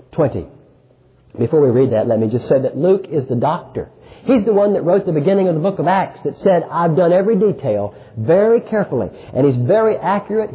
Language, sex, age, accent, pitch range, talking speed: English, male, 50-69, American, 150-230 Hz, 215 wpm